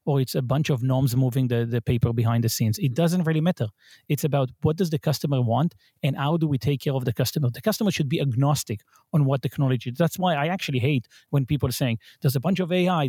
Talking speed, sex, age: 255 wpm, male, 30-49